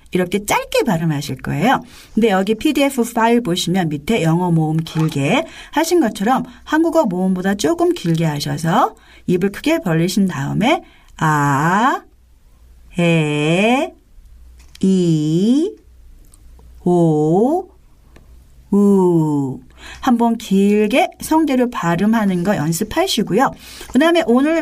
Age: 40-59